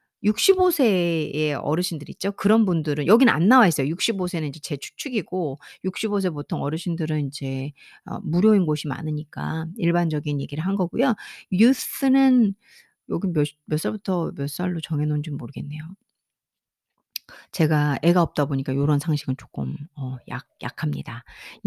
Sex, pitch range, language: female, 150-235 Hz, Korean